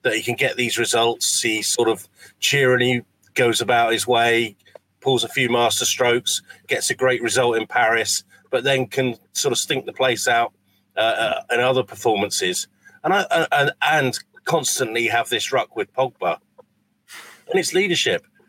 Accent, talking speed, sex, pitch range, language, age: British, 170 wpm, male, 120-190 Hz, English, 40-59